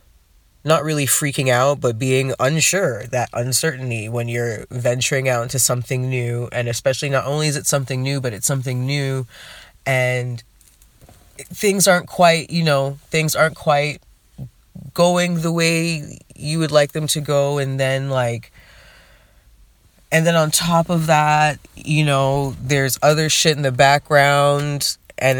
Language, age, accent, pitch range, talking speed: English, 20-39, American, 115-145 Hz, 150 wpm